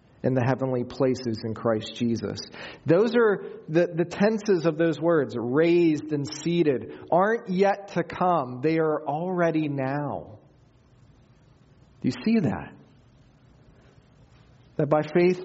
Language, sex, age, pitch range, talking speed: English, male, 40-59, 120-160 Hz, 130 wpm